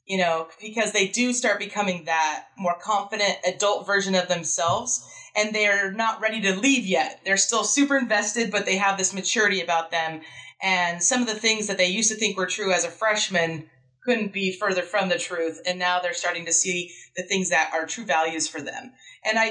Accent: American